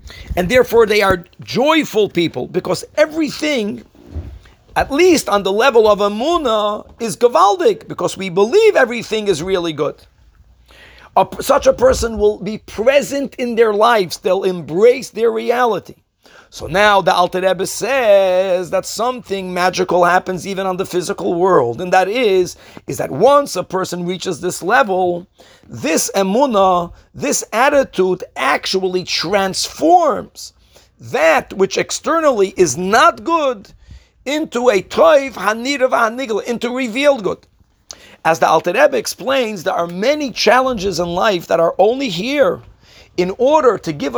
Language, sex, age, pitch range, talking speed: English, male, 50-69, 185-255 Hz, 135 wpm